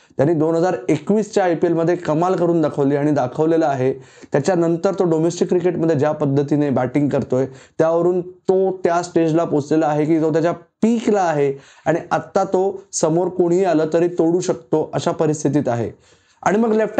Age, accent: 20-39, native